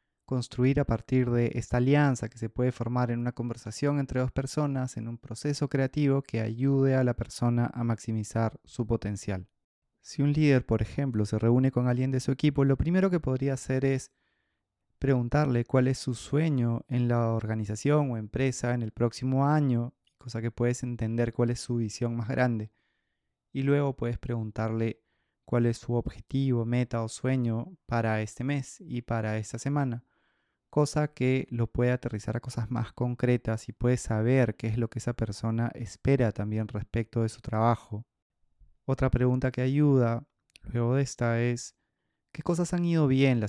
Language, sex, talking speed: Spanish, male, 175 wpm